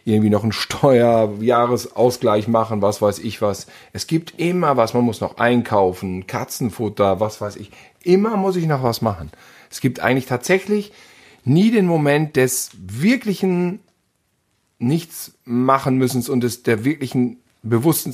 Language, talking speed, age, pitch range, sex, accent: German, 145 wpm, 40-59, 105-135 Hz, male, German